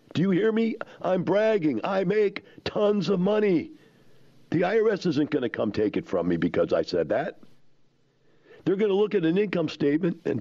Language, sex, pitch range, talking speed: English, male, 140-195 Hz, 195 wpm